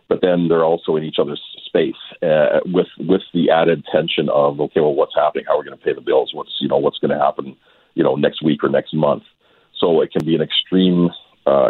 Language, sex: English, male